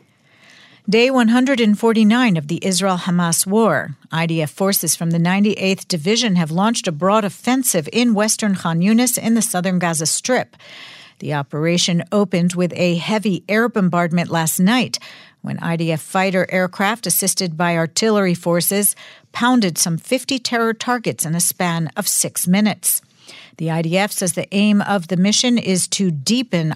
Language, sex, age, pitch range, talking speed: English, female, 50-69, 170-215 Hz, 150 wpm